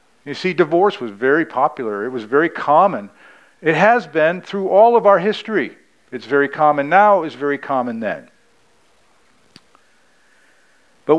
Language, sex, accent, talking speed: English, male, American, 150 wpm